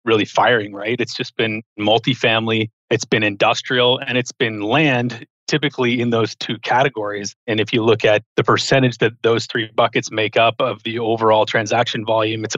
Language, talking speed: English, 180 wpm